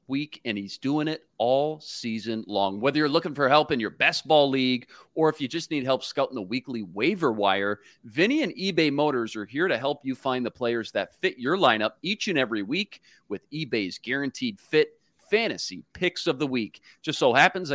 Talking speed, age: 205 wpm, 40-59